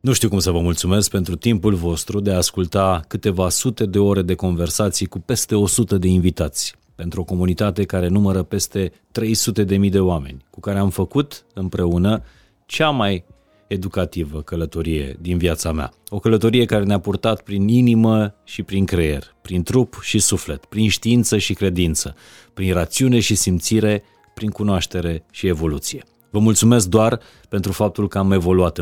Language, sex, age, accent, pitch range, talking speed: Romanian, male, 30-49, native, 90-110 Hz, 160 wpm